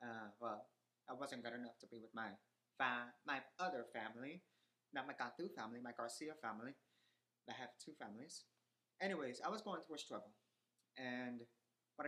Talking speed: 170 wpm